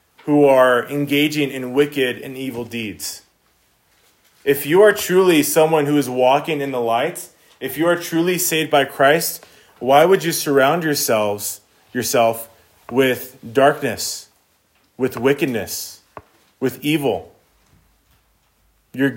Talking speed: 120 wpm